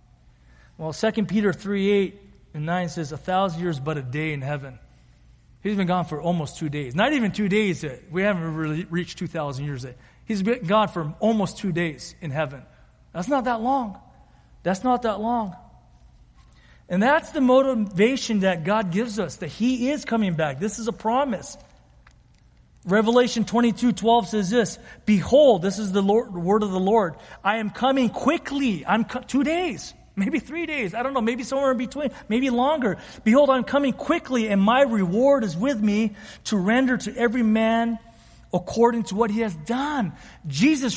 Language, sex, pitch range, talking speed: English, male, 180-245 Hz, 185 wpm